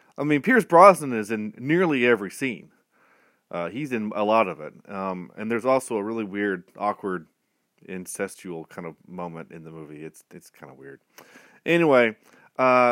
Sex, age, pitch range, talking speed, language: male, 30-49, 100-135 Hz, 175 wpm, English